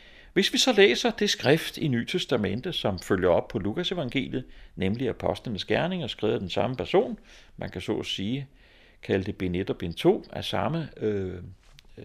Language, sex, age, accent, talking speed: Danish, male, 60-79, native, 175 wpm